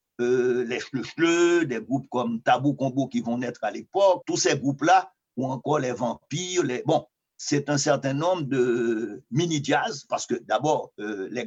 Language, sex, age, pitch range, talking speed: French, male, 50-69, 125-155 Hz, 185 wpm